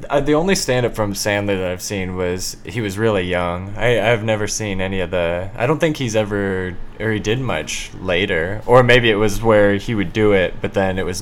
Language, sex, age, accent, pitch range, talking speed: English, male, 20-39, American, 100-115 Hz, 235 wpm